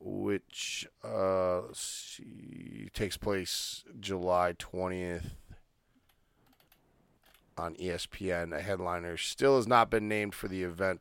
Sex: male